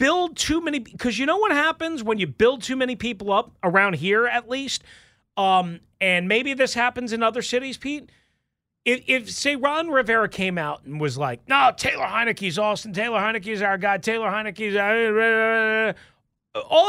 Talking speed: 180 wpm